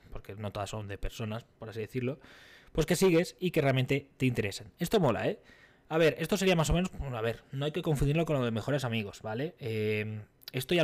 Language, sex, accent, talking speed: Spanish, male, Spanish, 240 wpm